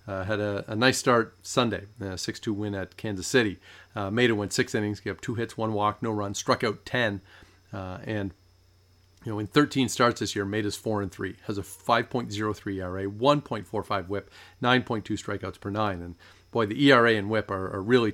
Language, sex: English, male